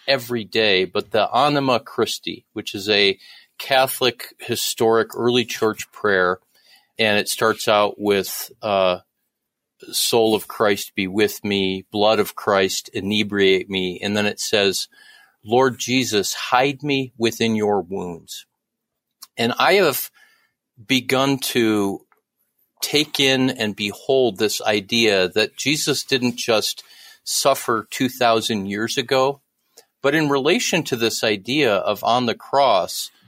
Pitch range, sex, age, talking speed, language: 105-135 Hz, male, 40-59, 130 wpm, English